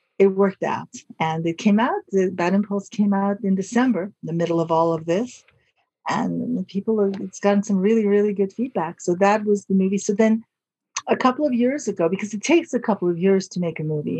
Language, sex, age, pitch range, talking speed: English, female, 40-59, 165-205 Hz, 225 wpm